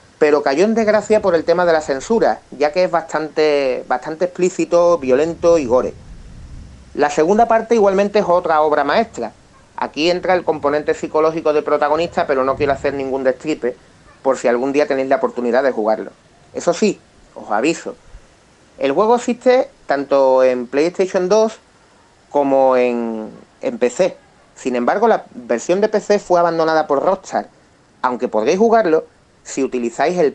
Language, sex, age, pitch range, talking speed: Spanish, male, 30-49, 125-175 Hz, 160 wpm